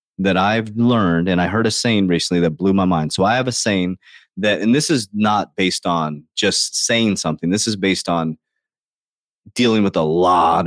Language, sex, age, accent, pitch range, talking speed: English, male, 30-49, American, 90-125 Hz, 200 wpm